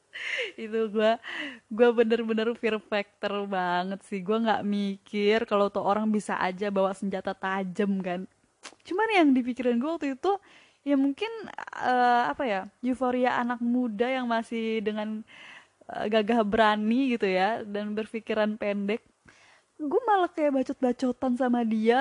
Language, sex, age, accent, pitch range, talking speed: Indonesian, female, 20-39, native, 215-290 Hz, 140 wpm